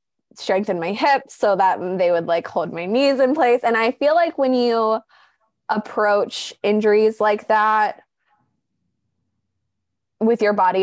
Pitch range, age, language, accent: 205-265 Hz, 20-39, English, American